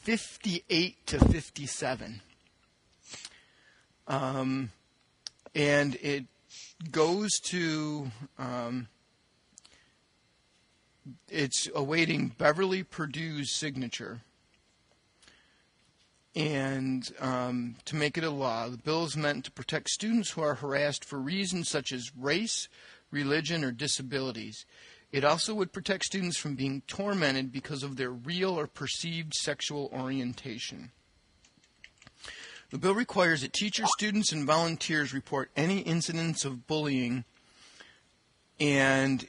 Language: English